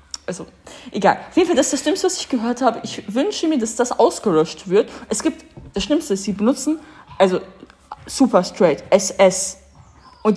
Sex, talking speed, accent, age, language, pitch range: female, 180 wpm, German, 20-39, German, 195-260 Hz